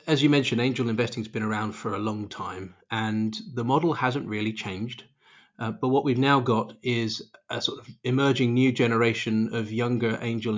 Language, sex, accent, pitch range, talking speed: English, male, British, 115-130 Hz, 195 wpm